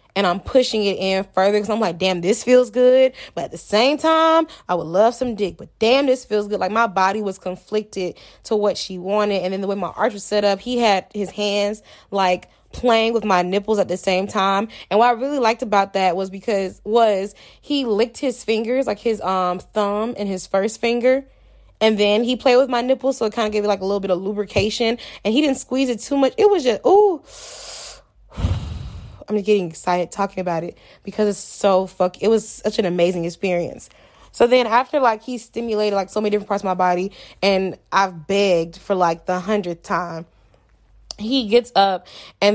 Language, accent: English, American